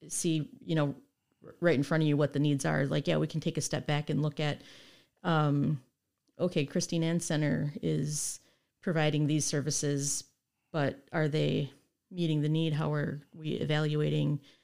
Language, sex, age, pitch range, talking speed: English, female, 40-59, 145-160 Hz, 170 wpm